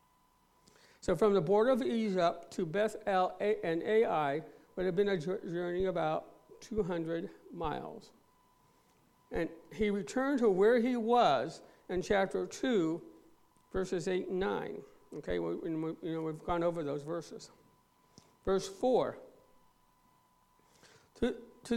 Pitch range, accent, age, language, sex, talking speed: 175-225 Hz, American, 60-79, English, male, 115 wpm